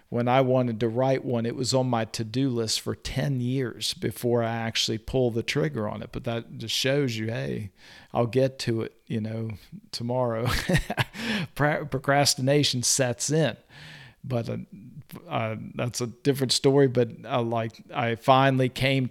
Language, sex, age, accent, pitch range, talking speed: English, male, 50-69, American, 115-135 Hz, 165 wpm